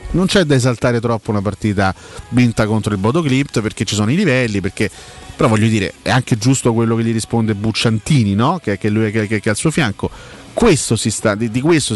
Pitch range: 100-140 Hz